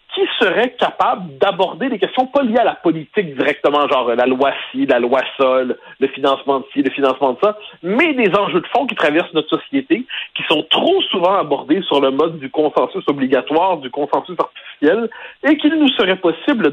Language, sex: French, male